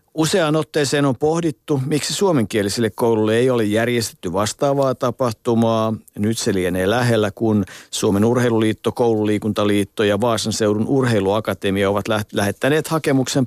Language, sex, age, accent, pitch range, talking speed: Finnish, male, 50-69, native, 110-130 Hz, 125 wpm